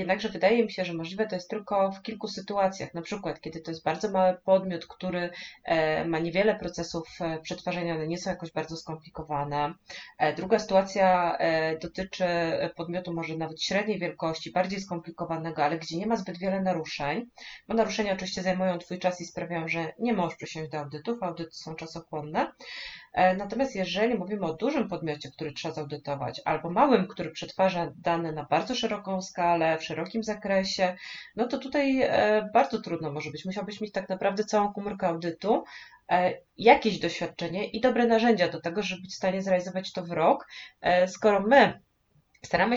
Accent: native